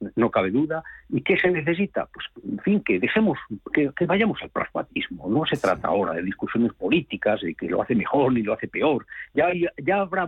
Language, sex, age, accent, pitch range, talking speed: Spanish, male, 50-69, Spanish, 100-130 Hz, 210 wpm